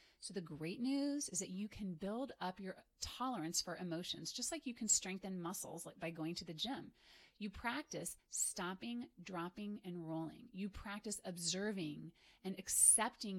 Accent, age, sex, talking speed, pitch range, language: American, 30-49, female, 160 wpm, 175-225 Hz, English